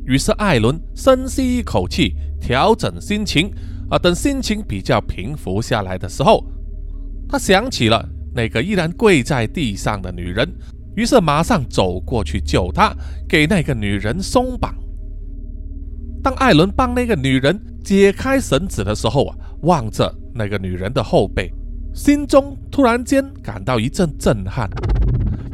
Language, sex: Chinese, male